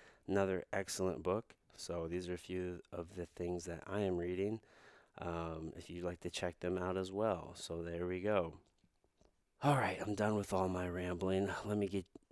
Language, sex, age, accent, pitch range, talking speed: English, male, 30-49, American, 90-110 Hz, 195 wpm